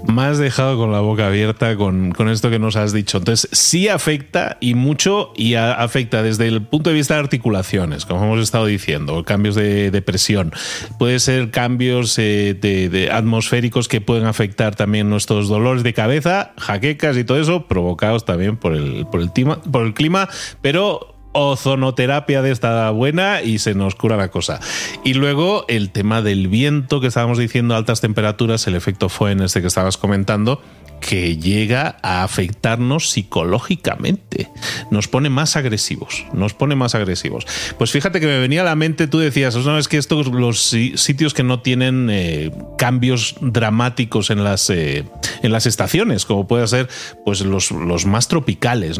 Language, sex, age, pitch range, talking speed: Spanish, male, 30-49, 105-135 Hz, 175 wpm